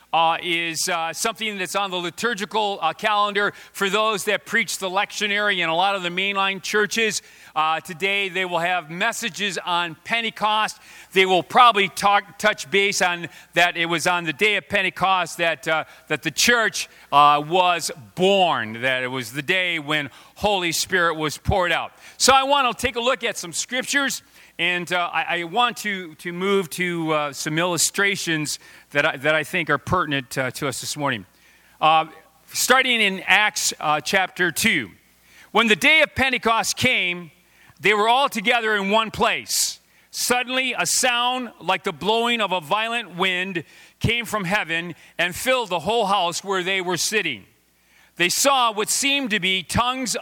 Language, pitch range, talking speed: English, 165-215 Hz, 175 wpm